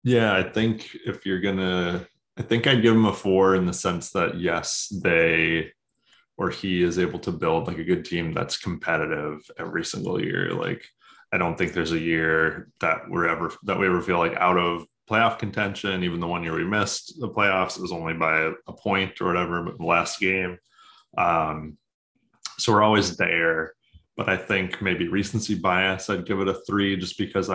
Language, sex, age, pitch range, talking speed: English, male, 20-39, 85-105 Hz, 200 wpm